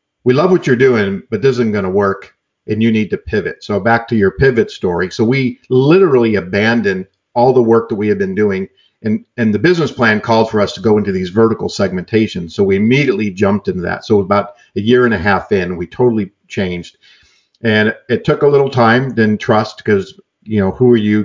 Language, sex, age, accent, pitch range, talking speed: English, male, 50-69, American, 100-125 Hz, 225 wpm